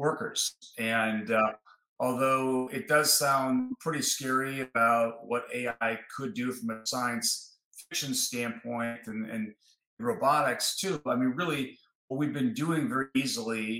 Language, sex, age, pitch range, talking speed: English, male, 40-59, 110-135 Hz, 140 wpm